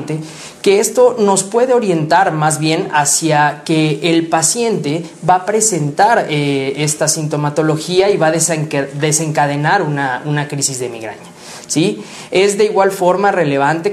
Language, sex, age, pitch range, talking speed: Spanish, male, 20-39, 150-185 Hz, 135 wpm